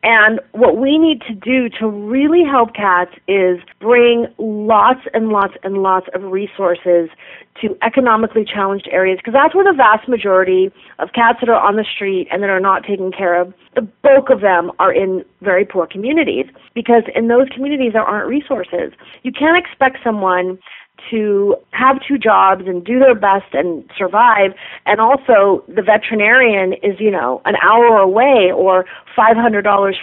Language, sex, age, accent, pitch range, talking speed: English, female, 40-59, American, 195-245 Hz, 170 wpm